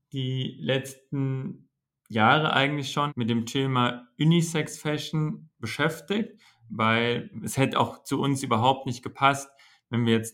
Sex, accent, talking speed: male, German, 135 wpm